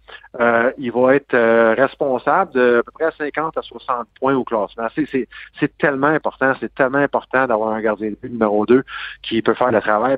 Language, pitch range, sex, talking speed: French, 110-130 Hz, male, 210 wpm